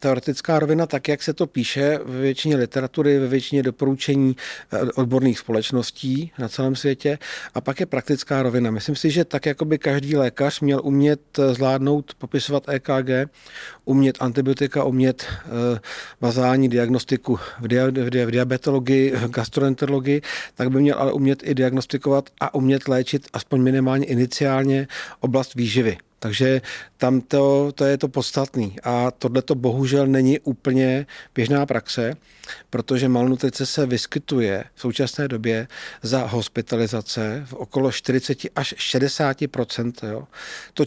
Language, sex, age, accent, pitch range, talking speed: Czech, male, 40-59, native, 125-140 Hz, 130 wpm